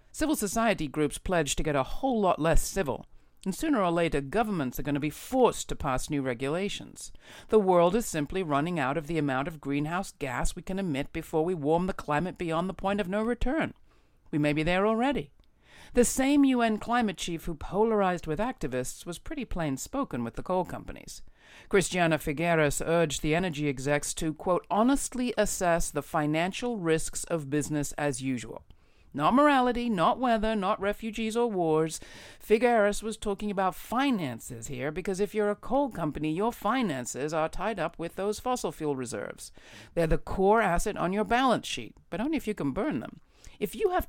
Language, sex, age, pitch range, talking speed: English, female, 50-69, 155-220 Hz, 190 wpm